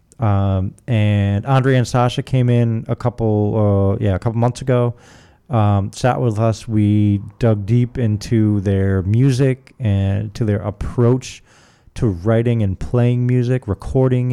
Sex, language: male, English